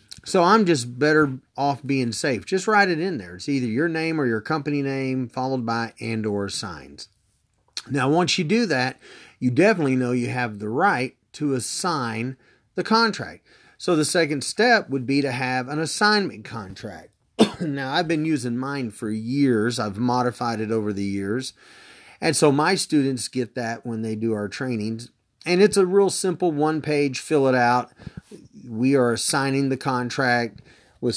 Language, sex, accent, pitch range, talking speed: English, male, American, 115-150 Hz, 175 wpm